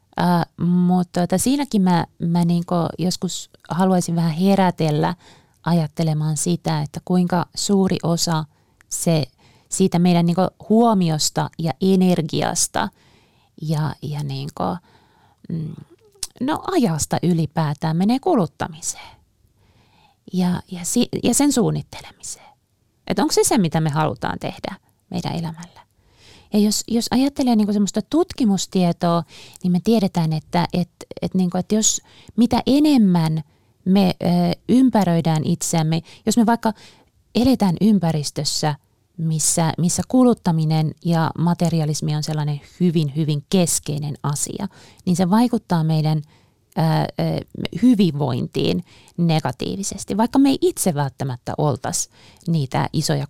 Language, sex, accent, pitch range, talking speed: Finnish, female, native, 155-195 Hz, 115 wpm